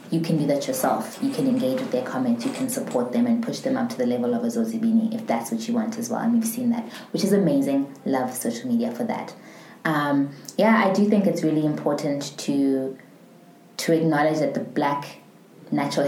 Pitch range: 150-245 Hz